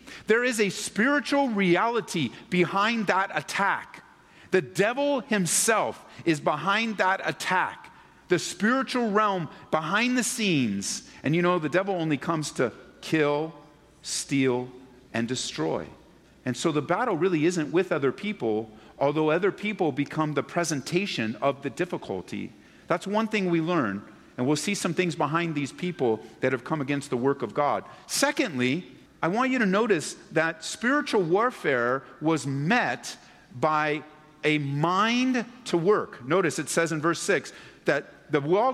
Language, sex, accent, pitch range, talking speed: English, male, American, 150-210 Hz, 150 wpm